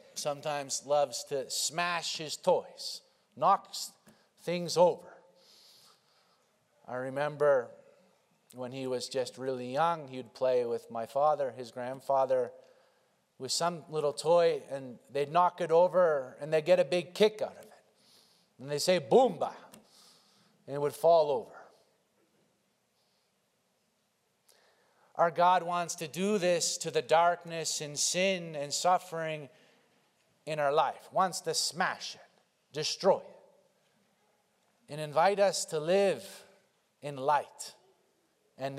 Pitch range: 145-175 Hz